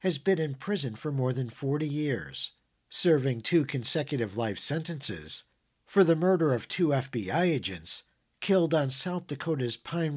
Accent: American